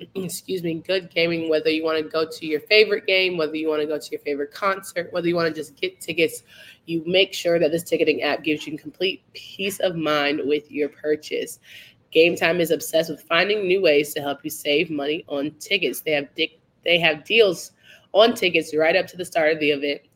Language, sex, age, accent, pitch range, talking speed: English, female, 20-39, American, 150-185 Hz, 225 wpm